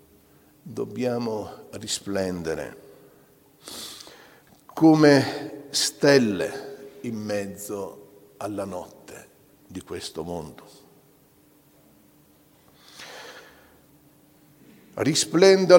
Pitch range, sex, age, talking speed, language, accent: 105-155 Hz, male, 60-79, 45 wpm, Italian, native